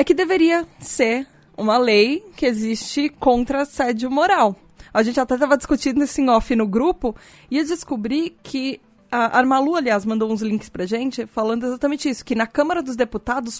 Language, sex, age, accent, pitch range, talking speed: Portuguese, female, 20-39, Brazilian, 220-275 Hz, 180 wpm